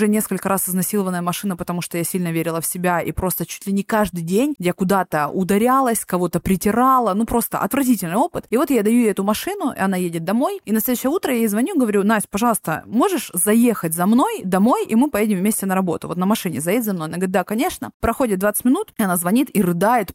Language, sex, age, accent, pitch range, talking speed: Russian, female, 20-39, native, 185-235 Hz, 230 wpm